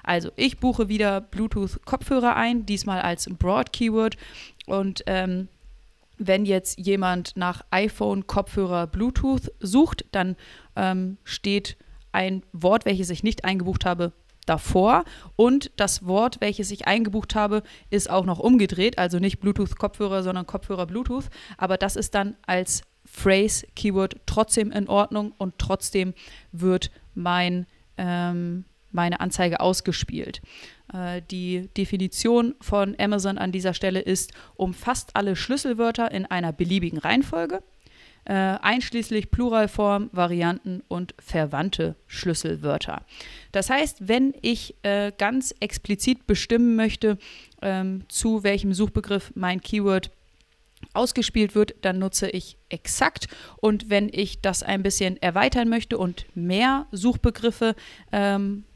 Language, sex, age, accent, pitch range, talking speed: German, female, 30-49, German, 185-215 Hz, 120 wpm